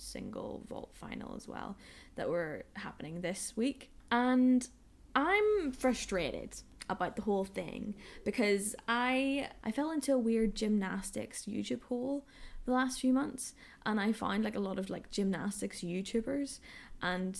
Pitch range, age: 185-245 Hz, 10-29